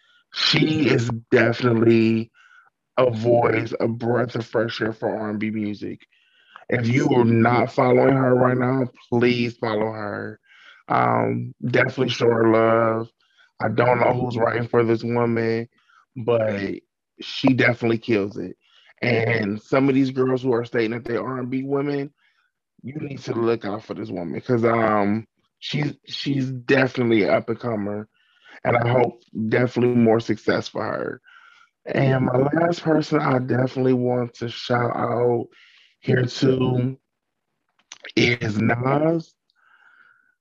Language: English